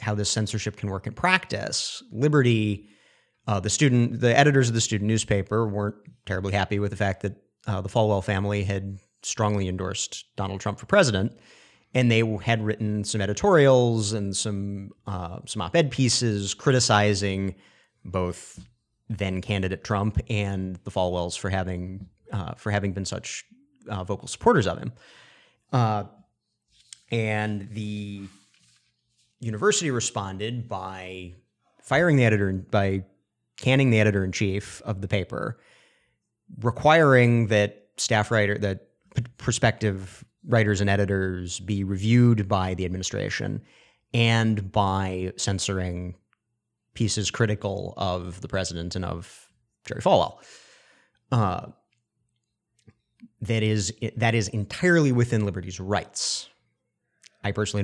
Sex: male